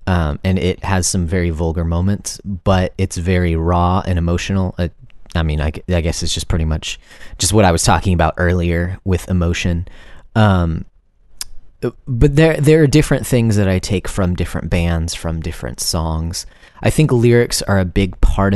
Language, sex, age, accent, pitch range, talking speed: English, male, 30-49, American, 80-95 Hz, 180 wpm